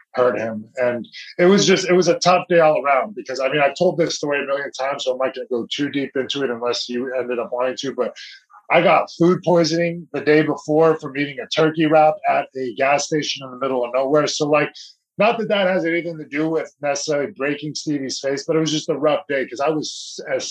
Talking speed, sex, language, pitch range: 250 wpm, male, English, 130-160 Hz